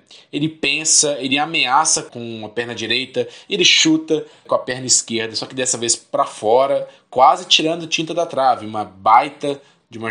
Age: 20-39